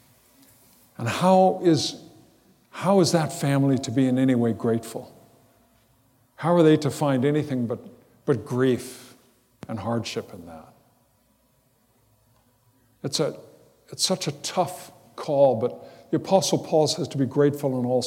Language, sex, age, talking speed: English, male, 60-79, 145 wpm